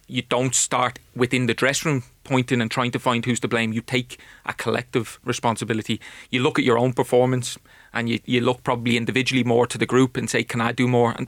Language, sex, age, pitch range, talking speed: English, male, 30-49, 115-130 Hz, 230 wpm